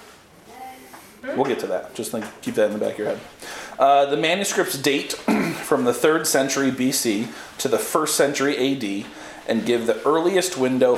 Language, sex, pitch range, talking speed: English, male, 110-145 Hz, 175 wpm